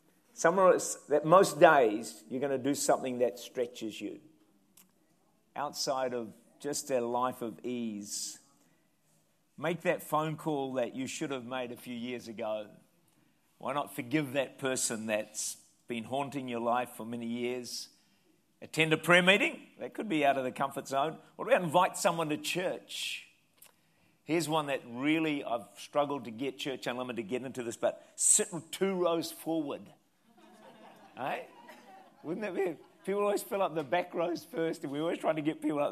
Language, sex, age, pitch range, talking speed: English, male, 50-69, 125-165 Hz, 175 wpm